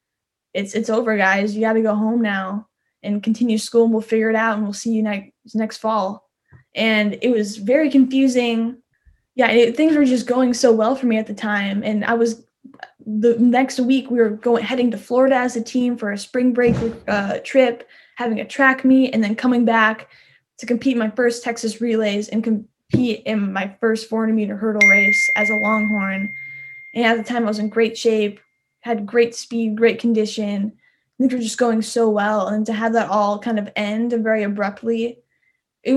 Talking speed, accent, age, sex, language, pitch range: 205 wpm, American, 10-29, female, English, 215-245 Hz